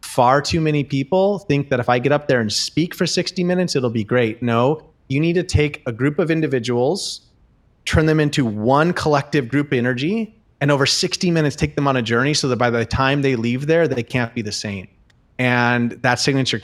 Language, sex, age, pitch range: English, male, 30-49, 120-150 Hz